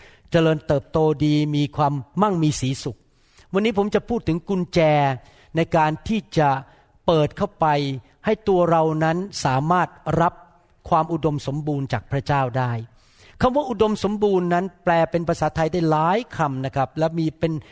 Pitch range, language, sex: 150-190 Hz, Thai, male